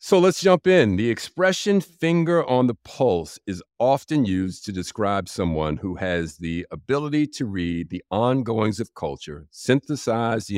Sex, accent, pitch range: male, American, 80-115 Hz